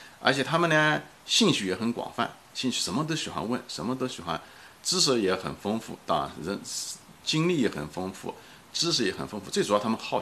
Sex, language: male, Chinese